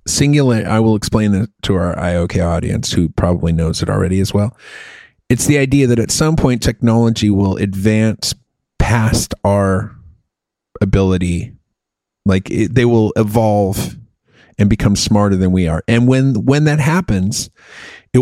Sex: male